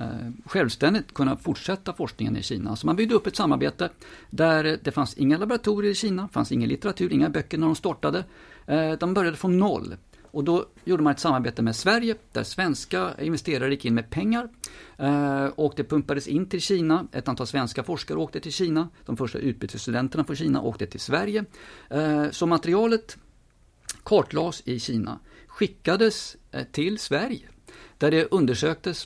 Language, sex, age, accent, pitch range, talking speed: English, male, 50-69, Swedish, 120-180 Hz, 160 wpm